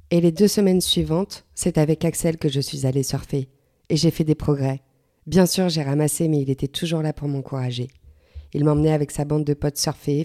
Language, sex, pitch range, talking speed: French, female, 140-160 Hz, 215 wpm